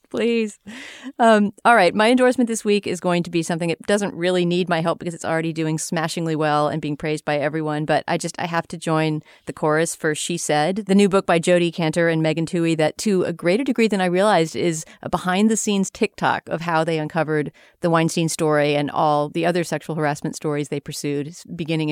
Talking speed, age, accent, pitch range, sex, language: 225 wpm, 40-59, American, 155-190 Hz, female, English